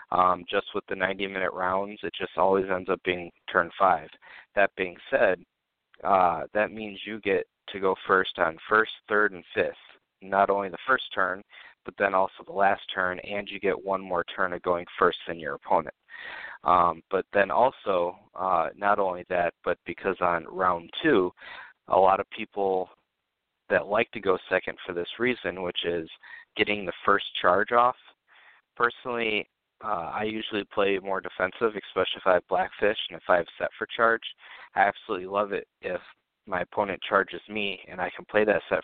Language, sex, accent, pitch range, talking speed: English, male, American, 90-105 Hz, 185 wpm